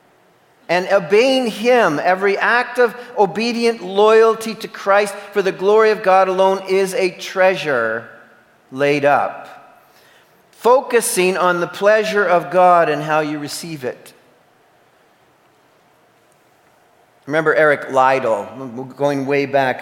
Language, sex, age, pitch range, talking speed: English, male, 40-59, 170-240 Hz, 115 wpm